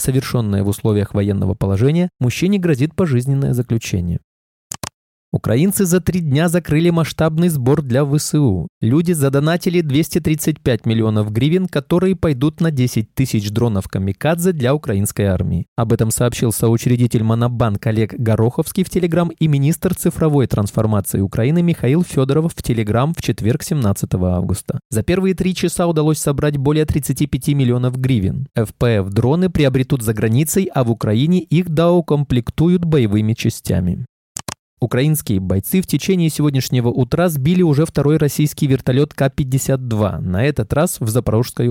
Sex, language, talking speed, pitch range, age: male, Russian, 130 wpm, 110-160 Hz, 20-39